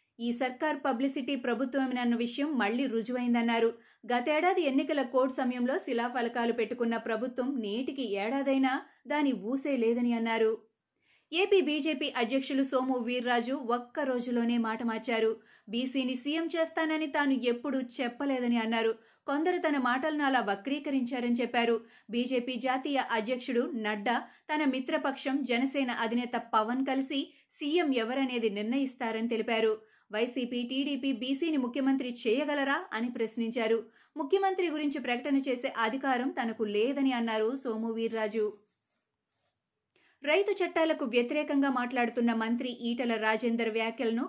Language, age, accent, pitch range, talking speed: Telugu, 30-49, native, 230-275 Hz, 90 wpm